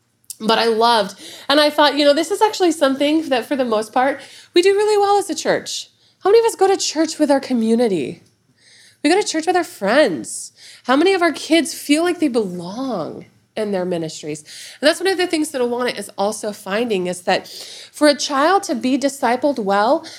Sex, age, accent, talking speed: female, 30-49, American, 215 wpm